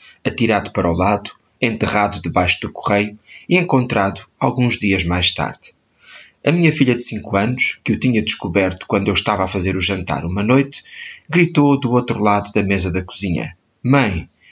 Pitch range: 100-125 Hz